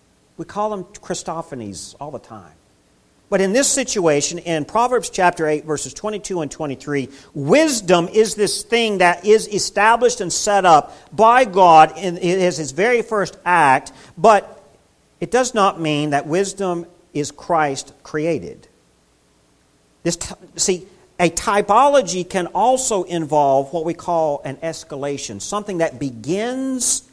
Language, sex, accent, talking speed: English, male, American, 135 wpm